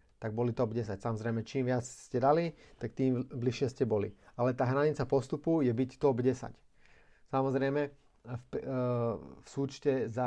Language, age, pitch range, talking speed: Slovak, 30-49, 115-135 Hz, 165 wpm